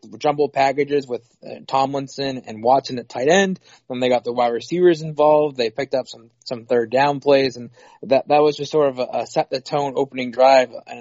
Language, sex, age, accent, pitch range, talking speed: English, male, 20-39, American, 125-145 Hz, 200 wpm